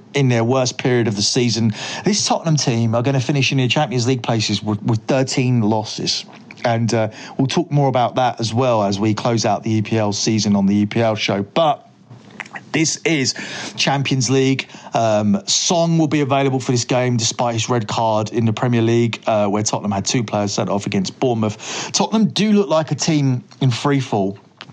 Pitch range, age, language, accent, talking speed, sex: 110-140 Hz, 40-59, English, British, 200 wpm, male